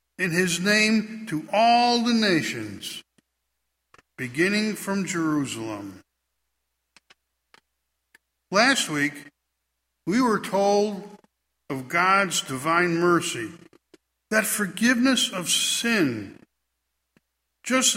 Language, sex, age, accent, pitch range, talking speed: English, male, 60-79, American, 145-220 Hz, 80 wpm